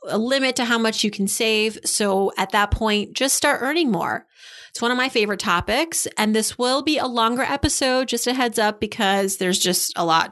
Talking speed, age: 220 wpm, 30-49